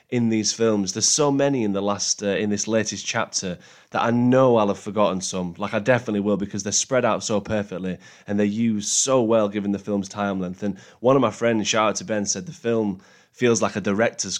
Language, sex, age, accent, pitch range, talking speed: English, male, 20-39, British, 100-120 Hz, 240 wpm